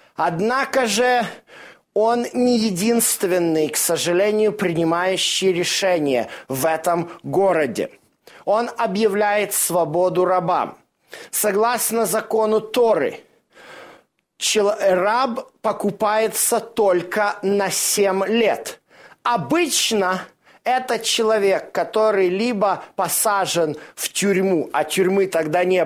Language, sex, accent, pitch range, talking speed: Russian, male, native, 190-235 Hz, 85 wpm